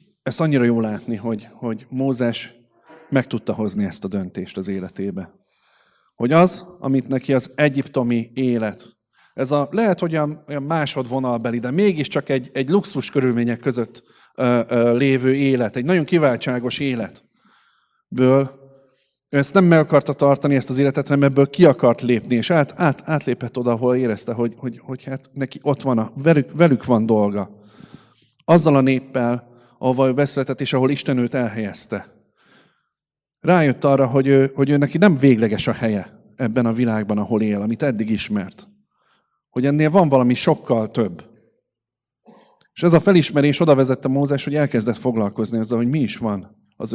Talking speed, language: 165 wpm, Hungarian